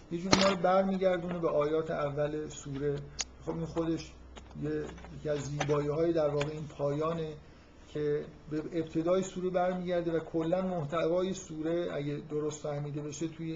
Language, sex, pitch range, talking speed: Persian, male, 145-170 Hz, 150 wpm